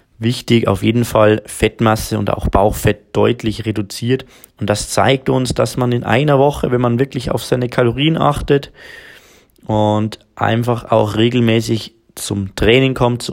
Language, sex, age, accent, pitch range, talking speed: German, male, 20-39, German, 105-115 Hz, 155 wpm